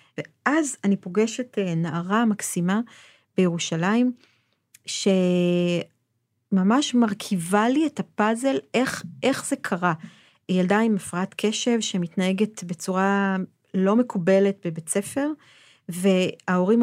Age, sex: 40-59, female